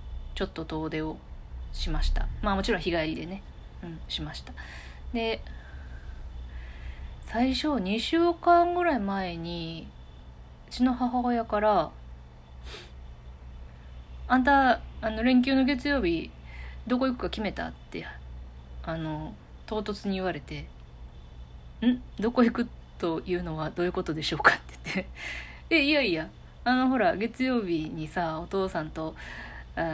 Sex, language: female, Japanese